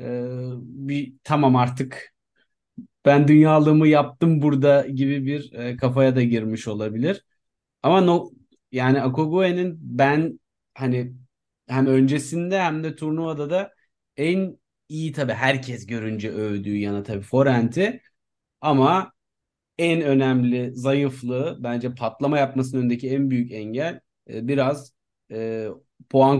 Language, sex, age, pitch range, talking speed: Turkish, male, 30-49, 125-165 Hz, 110 wpm